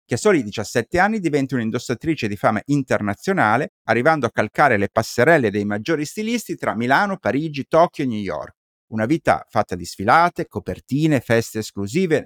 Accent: native